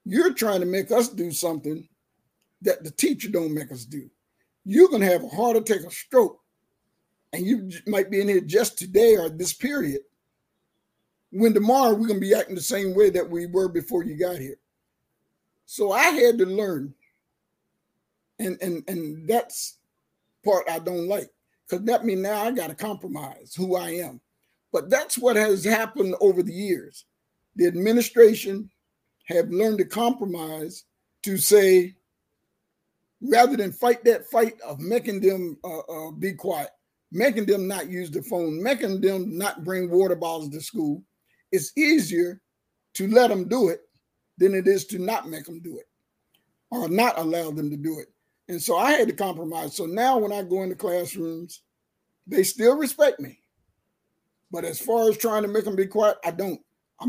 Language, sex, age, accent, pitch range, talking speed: English, male, 50-69, American, 175-230 Hz, 175 wpm